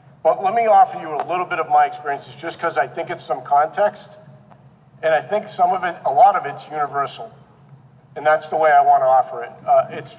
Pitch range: 135-175 Hz